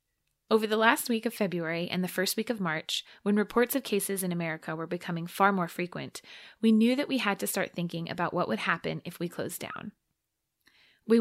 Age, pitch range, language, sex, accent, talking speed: 20-39, 175-220 Hz, English, female, American, 215 wpm